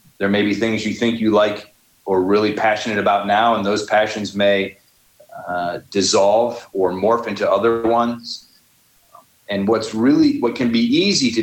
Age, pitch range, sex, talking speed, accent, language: 40-59, 105-140 Hz, male, 170 wpm, American, English